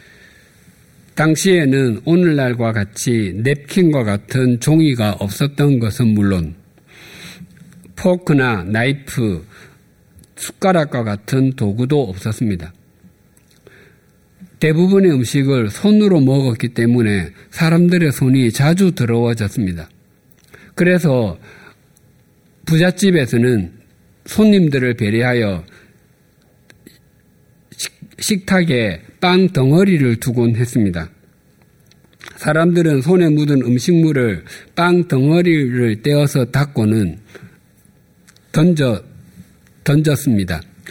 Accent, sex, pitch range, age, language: native, male, 110-165 Hz, 50-69, Korean